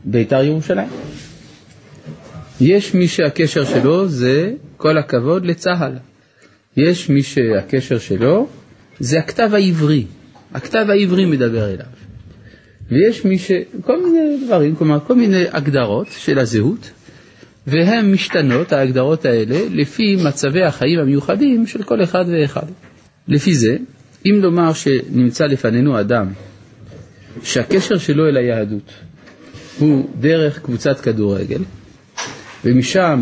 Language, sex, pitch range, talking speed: Hebrew, male, 120-170 Hz, 110 wpm